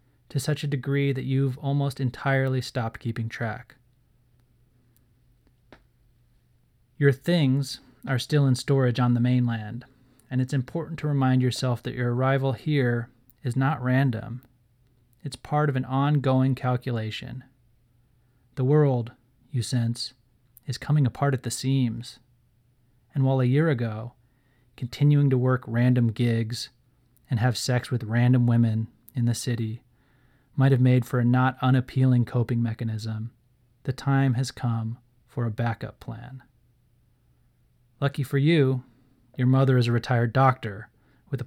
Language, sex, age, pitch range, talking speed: English, male, 30-49, 120-130 Hz, 135 wpm